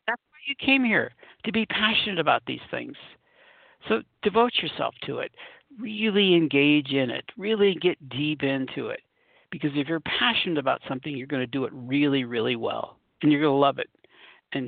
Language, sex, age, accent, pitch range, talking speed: English, male, 60-79, American, 140-200 Hz, 180 wpm